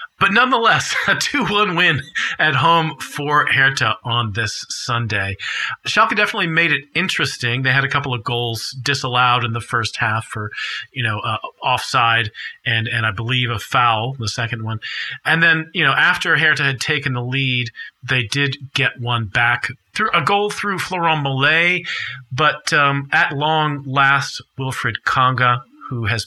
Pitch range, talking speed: 115-150 Hz, 165 wpm